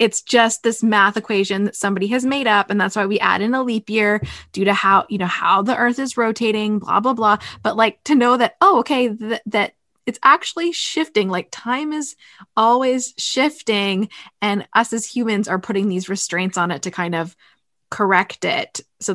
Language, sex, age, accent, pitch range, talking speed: English, female, 20-39, American, 190-230 Hz, 200 wpm